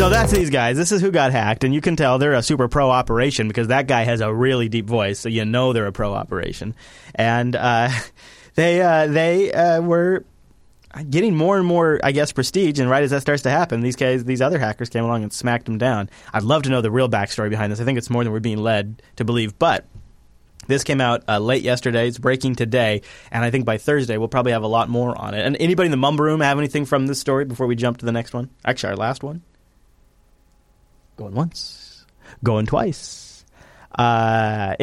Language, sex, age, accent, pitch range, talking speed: English, male, 30-49, American, 110-140 Hz, 230 wpm